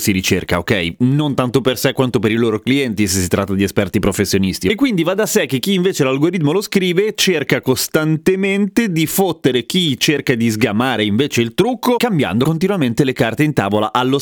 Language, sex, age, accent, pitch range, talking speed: Italian, male, 30-49, native, 115-165 Hz, 200 wpm